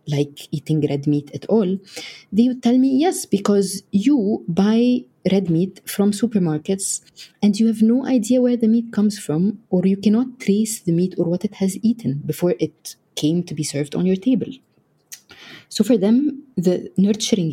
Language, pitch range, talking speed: English, 155-210 Hz, 180 wpm